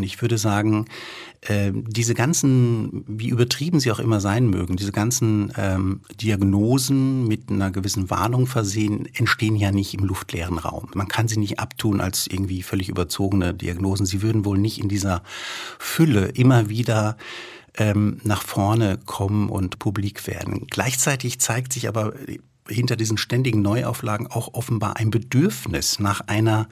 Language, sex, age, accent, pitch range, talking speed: German, male, 50-69, German, 100-115 Hz, 145 wpm